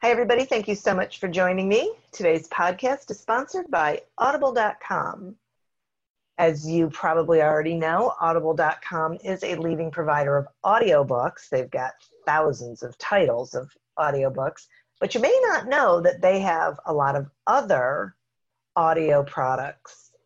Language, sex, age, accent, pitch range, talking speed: English, female, 50-69, American, 140-195 Hz, 140 wpm